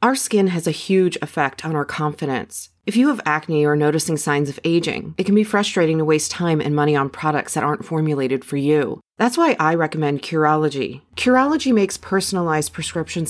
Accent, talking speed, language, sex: American, 195 wpm, English, female